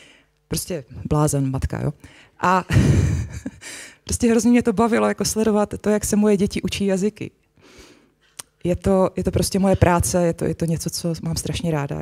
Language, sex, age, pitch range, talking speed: Czech, female, 30-49, 150-210 Hz, 175 wpm